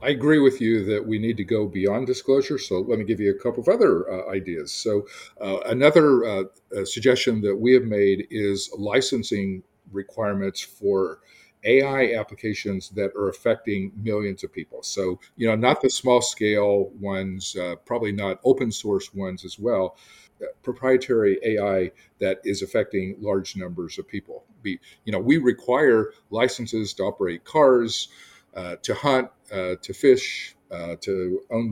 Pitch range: 100-130 Hz